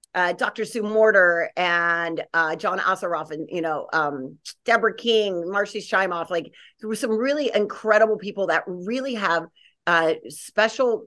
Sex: female